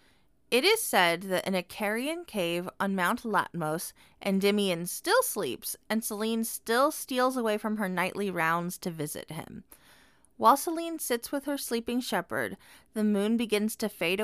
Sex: female